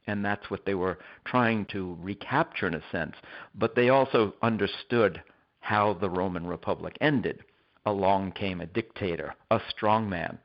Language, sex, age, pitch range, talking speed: English, male, 60-79, 95-110 Hz, 155 wpm